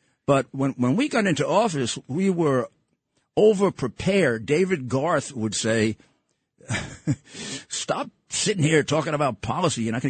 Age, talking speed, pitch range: 50-69, 145 wpm, 120-170 Hz